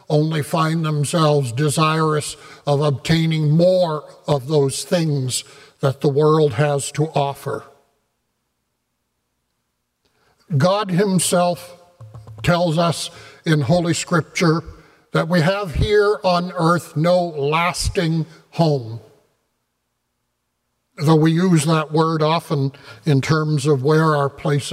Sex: male